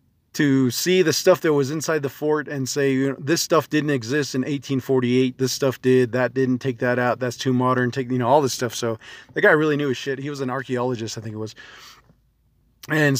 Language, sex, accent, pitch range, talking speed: English, male, American, 125-150 Hz, 235 wpm